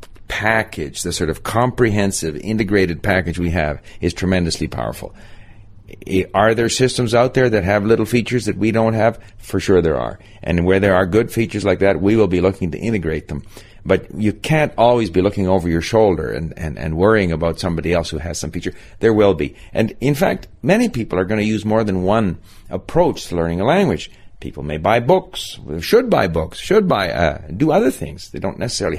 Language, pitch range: English, 85-110 Hz